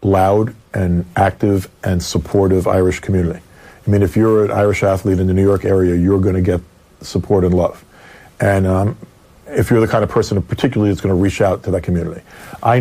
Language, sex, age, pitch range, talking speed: English, male, 40-59, 95-110 Hz, 195 wpm